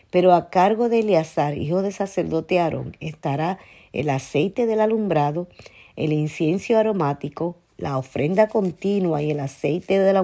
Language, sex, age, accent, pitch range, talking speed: Spanish, female, 50-69, American, 140-185 Hz, 145 wpm